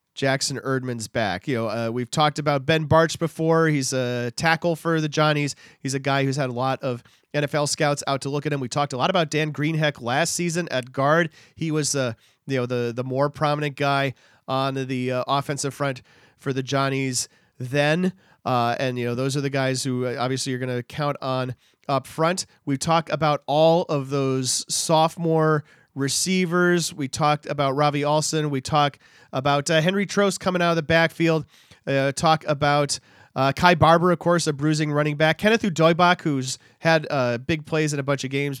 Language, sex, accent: English, male, American